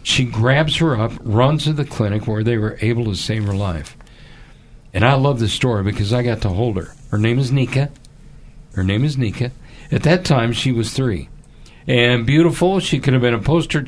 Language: English